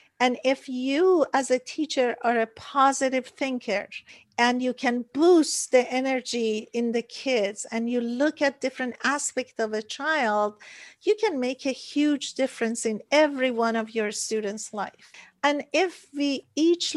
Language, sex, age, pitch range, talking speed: English, female, 50-69, 225-270 Hz, 160 wpm